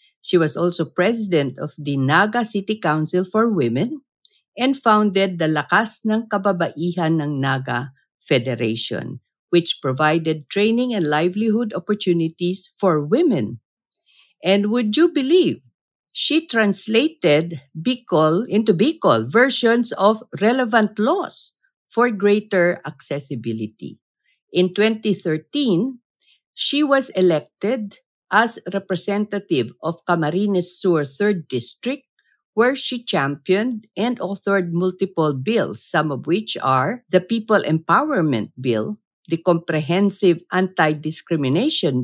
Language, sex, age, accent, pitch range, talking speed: English, female, 50-69, Filipino, 145-215 Hz, 105 wpm